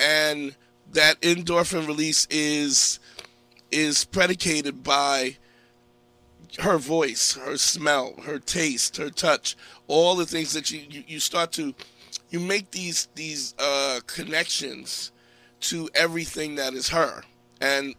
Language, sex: English, male